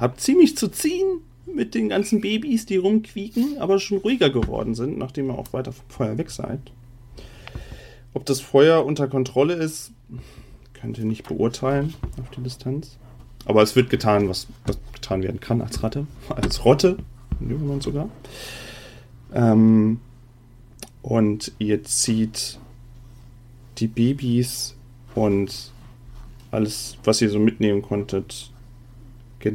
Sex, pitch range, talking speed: male, 115-130 Hz, 130 wpm